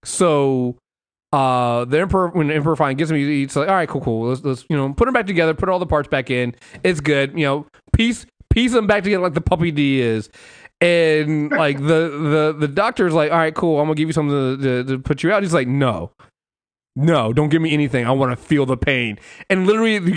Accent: American